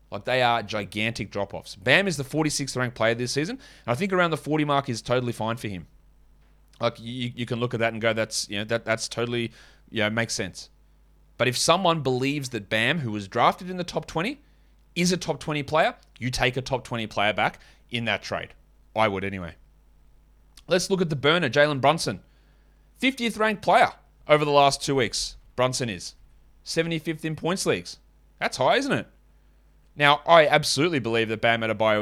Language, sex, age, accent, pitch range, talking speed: English, male, 30-49, Australian, 115-160 Hz, 195 wpm